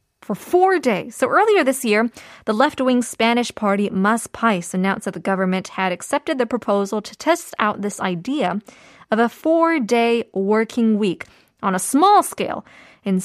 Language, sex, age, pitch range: Korean, female, 20-39, 210-280 Hz